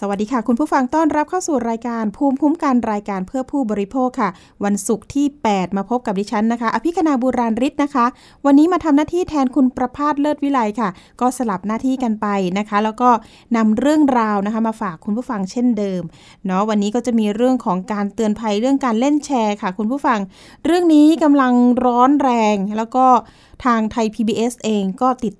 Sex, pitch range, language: female, 205-260 Hz, Thai